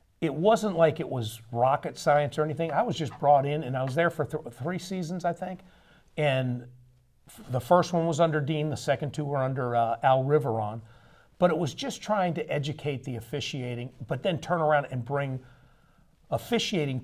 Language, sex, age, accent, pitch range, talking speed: English, male, 50-69, American, 120-160 Hz, 190 wpm